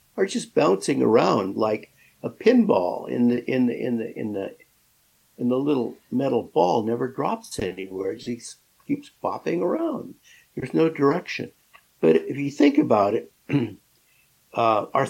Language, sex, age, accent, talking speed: English, male, 60-79, American, 160 wpm